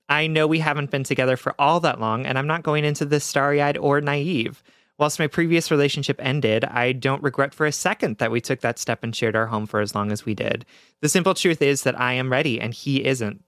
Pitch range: 120-150 Hz